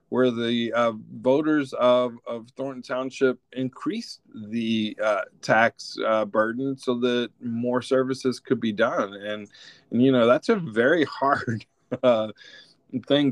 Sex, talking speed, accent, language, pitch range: male, 140 wpm, American, English, 110-130 Hz